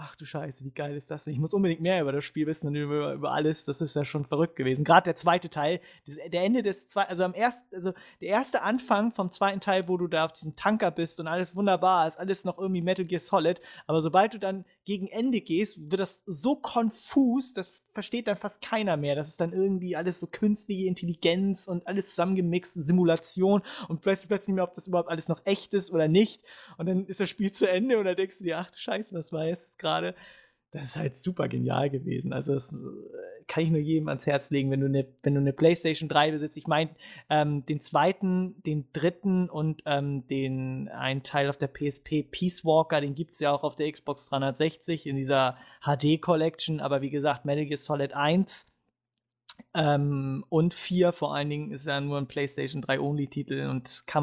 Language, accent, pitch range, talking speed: English, German, 145-190 Hz, 210 wpm